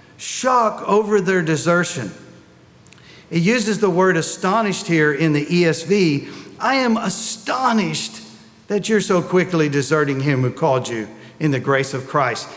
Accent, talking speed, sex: American, 145 wpm, male